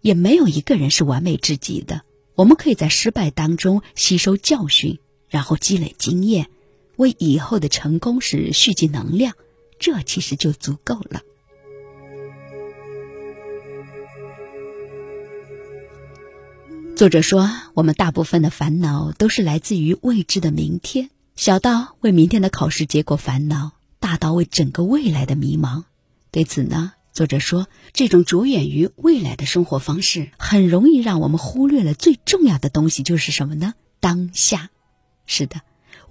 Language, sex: Chinese, female